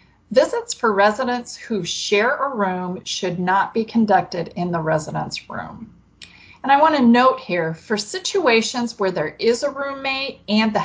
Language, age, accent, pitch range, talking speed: English, 30-49, American, 190-260 Hz, 165 wpm